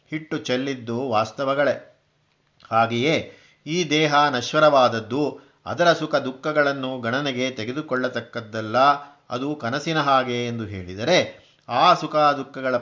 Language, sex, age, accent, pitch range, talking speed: Kannada, male, 50-69, native, 125-145 Hz, 95 wpm